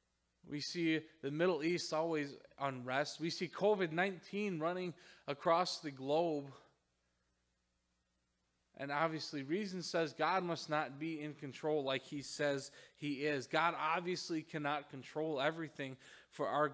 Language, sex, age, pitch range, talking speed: English, male, 20-39, 120-155 Hz, 130 wpm